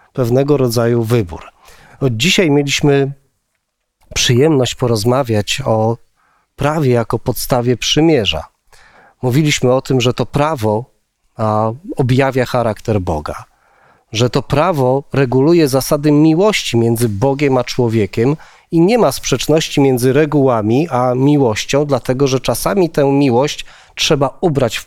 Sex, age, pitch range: male, 30-49, 110-140 Hz